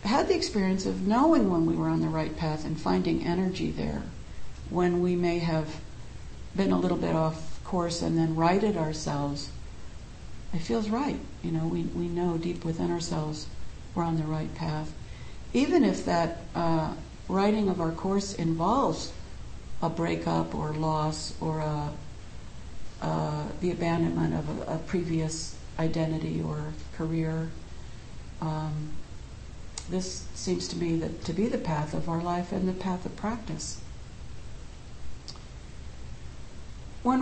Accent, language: American, English